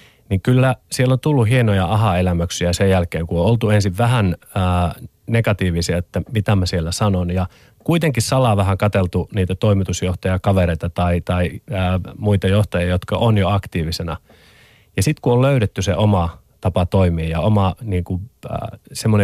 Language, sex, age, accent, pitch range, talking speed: Finnish, male, 30-49, native, 90-110 Hz, 155 wpm